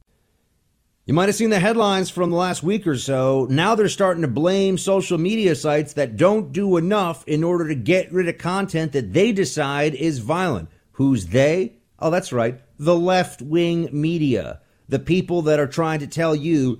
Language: English